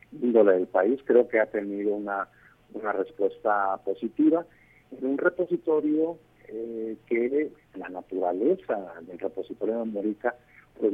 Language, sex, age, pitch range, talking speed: Spanish, male, 50-69, 100-120 Hz, 125 wpm